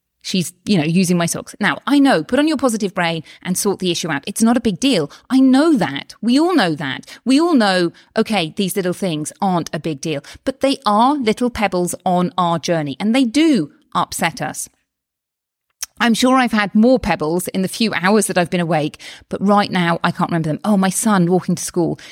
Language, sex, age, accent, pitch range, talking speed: English, female, 30-49, British, 180-245 Hz, 220 wpm